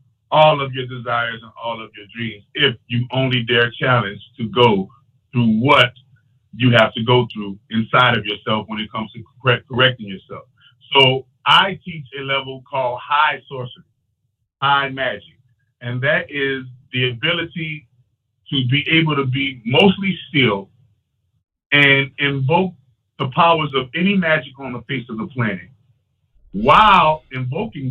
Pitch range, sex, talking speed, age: 120-150 Hz, male, 150 wpm, 50-69